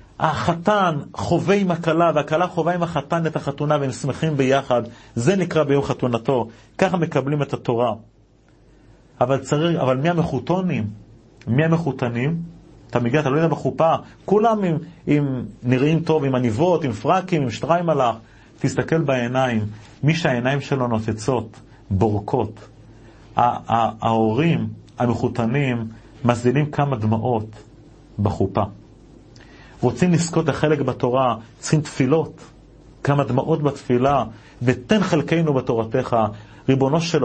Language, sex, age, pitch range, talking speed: Hebrew, male, 40-59, 125-180 Hz, 120 wpm